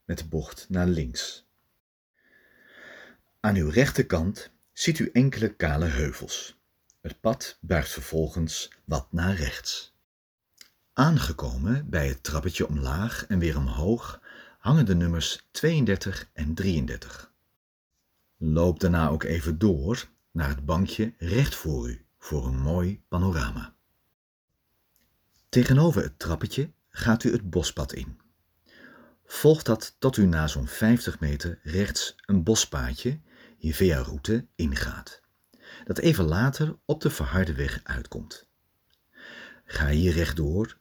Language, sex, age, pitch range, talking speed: Dutch, male, 40-59, 75-110 Hz, 120 wpm